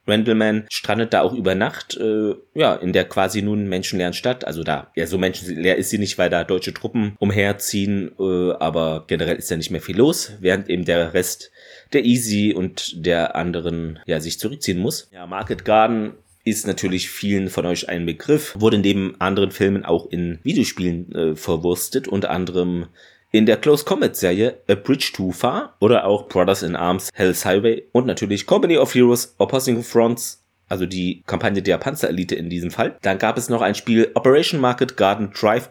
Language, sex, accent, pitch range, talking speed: German, male, German, 90-110 Hz, 190 wpm